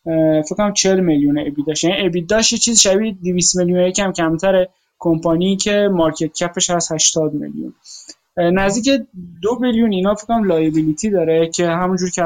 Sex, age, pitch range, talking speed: male, 20-39, 165-205 Hz, 140 wpm